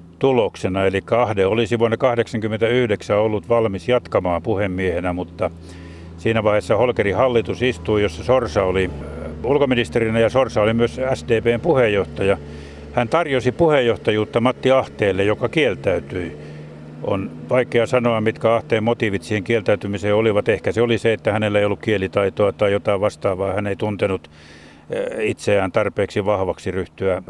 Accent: native